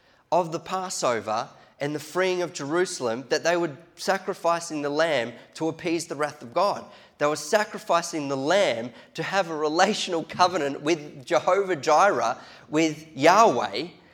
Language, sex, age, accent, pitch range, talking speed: English, male, 20-39, Australian, 120-165 Hz, 150 wpm